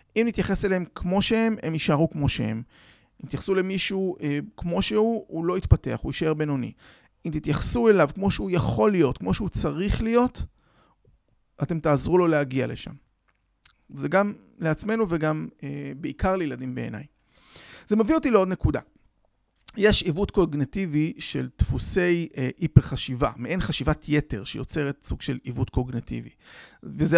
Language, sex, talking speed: Hebrew, male, 150 wpm